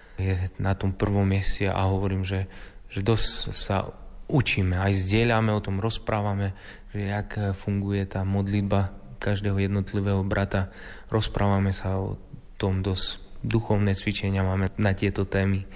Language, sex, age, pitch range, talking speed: Slovak, male, 20-39, 100-115 Hz, 135 wpm